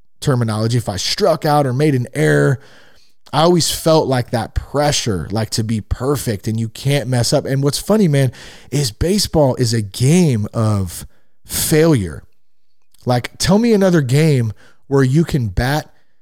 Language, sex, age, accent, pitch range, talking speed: English, male, 30-49, American, 110-145 Hz, 165 wpm